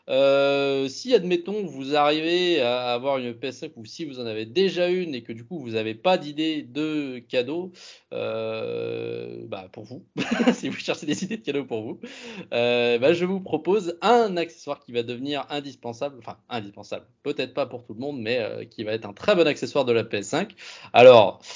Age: 20-39